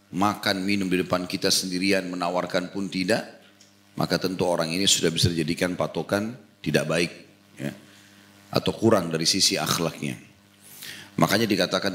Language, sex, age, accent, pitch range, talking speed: Indonesian, male, 30-49, native, 95-115 Hz, 135 wpm